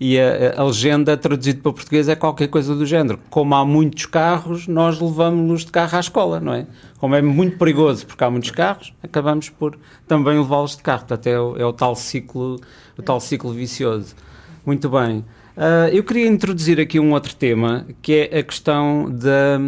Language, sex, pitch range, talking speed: Portuguese, male, 115-150 Hz, 180 wpm